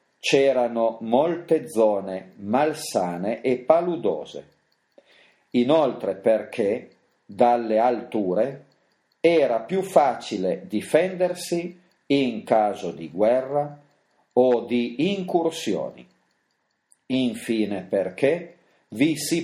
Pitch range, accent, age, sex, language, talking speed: 115-150 Hz, native, 40-59, male, Italian, 75 wpm